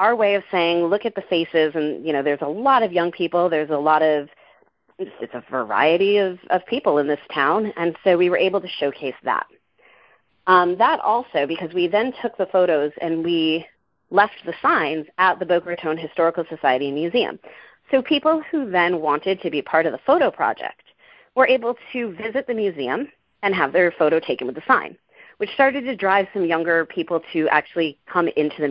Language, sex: English, female